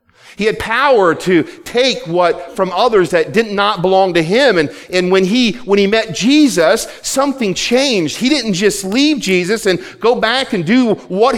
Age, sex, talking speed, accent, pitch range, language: 40-59, male, 185 wpm, American, 170-245 Hz, English